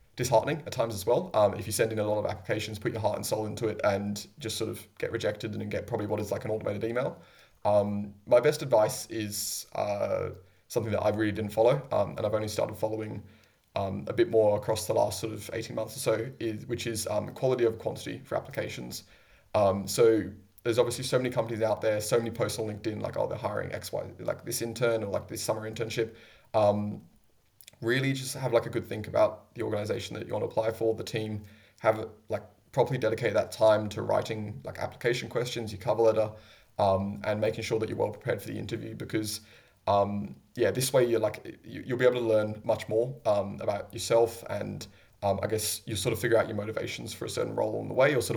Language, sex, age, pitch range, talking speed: English, male, 20-39, 105-115 Hz, 235 wpm